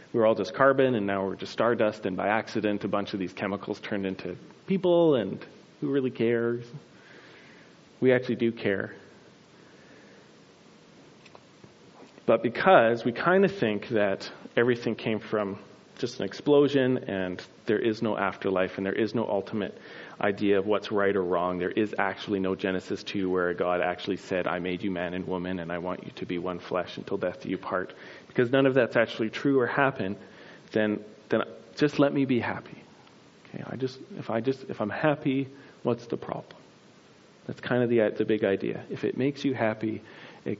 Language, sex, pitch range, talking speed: English, male, 95-125 Hz, 190 wpm